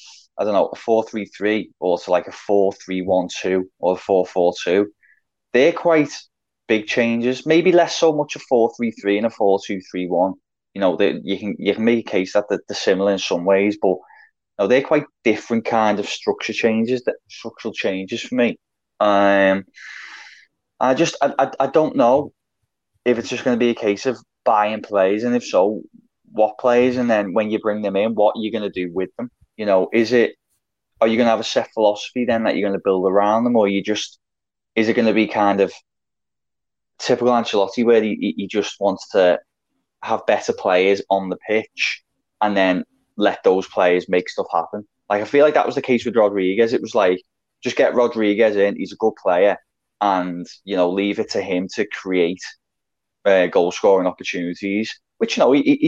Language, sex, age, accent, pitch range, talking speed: English, male, 20-39, British, 100-120 Hz, 210 wpm